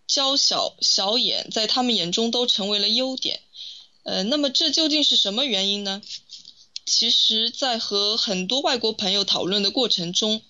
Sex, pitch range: female, 195-265 Hz